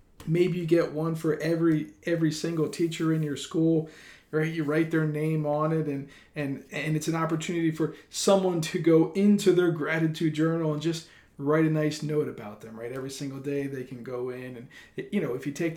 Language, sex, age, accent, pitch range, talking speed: English, male, 40-59, American, 145-170 Hz, 215 wpm